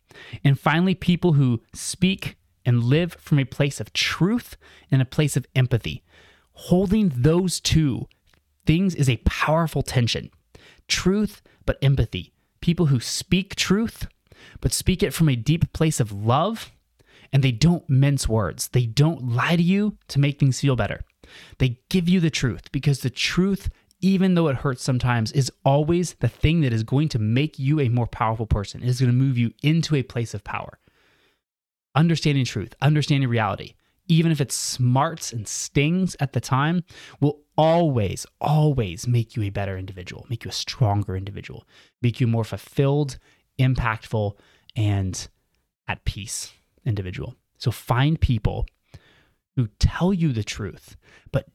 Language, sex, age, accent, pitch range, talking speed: English, male, 20-39, American, 110-155 Hz, 160 wpm